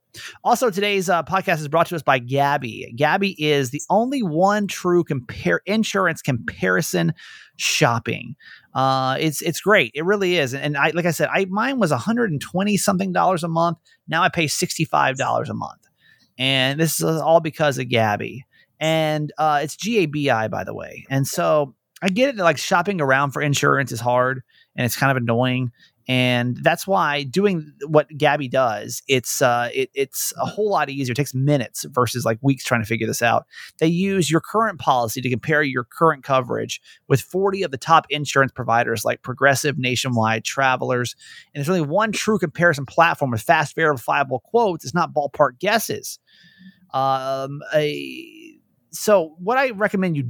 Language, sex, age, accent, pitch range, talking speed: English, male, 30-49, American, 130-180 Hz, 170 wpm